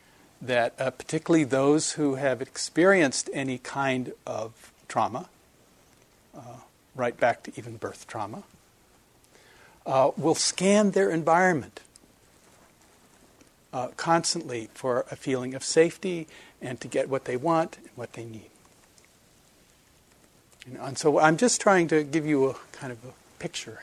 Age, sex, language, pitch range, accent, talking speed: 60-79, male, English, 125-160 Hz, American, 135 wpm